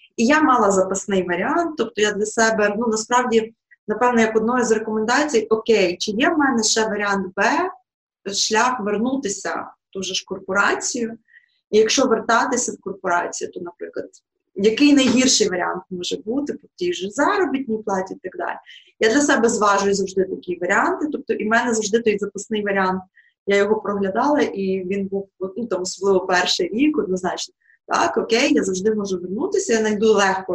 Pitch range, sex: 195-240 Hz, female